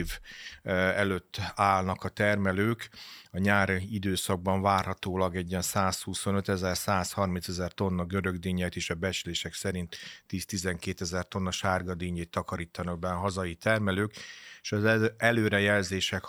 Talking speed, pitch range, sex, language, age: 105 wpm, 95-105 Hz, male, Hungarian, 30-49